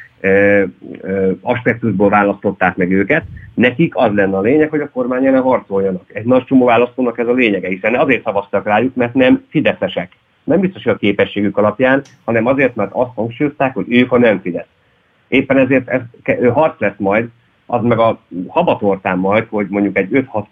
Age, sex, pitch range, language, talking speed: 30-49, male, 100-120 Hz, Hungarian, 175 wpm